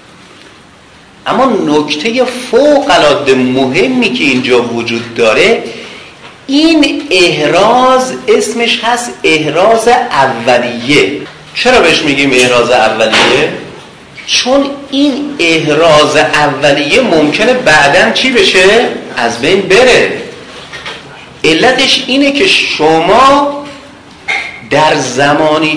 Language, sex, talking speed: Persian, male, 85 wpm